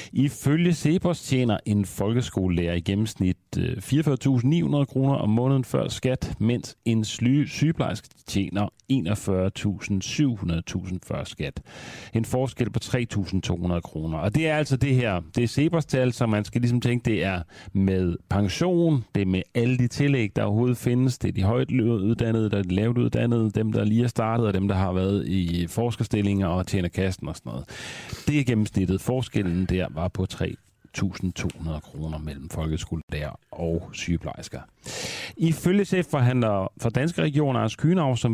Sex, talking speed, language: male, 160 wpm, Danish